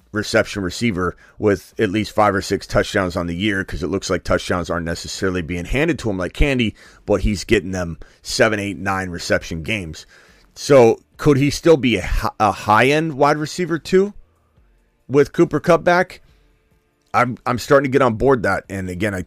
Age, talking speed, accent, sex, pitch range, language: 30-49, 185 wpm, American, male, 90-125 Hz, English